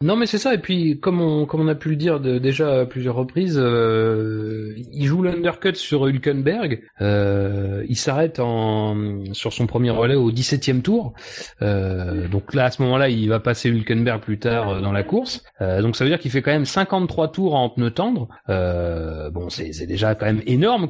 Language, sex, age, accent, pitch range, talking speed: French, male, 30-49, French, 110-160 Hz, 215 wpm